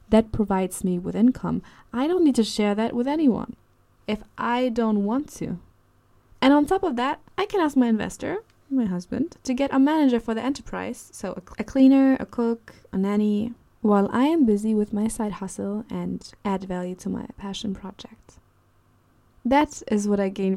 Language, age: English, 20-39